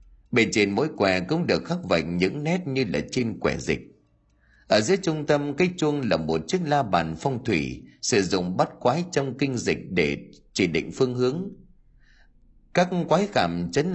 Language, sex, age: Vietnamese, male, 30-49